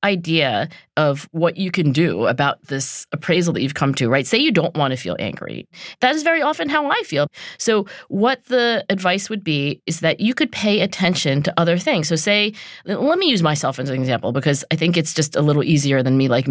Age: 40-59